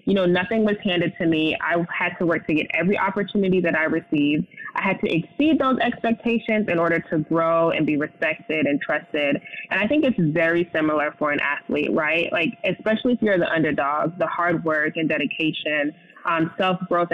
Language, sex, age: English, female, 20-39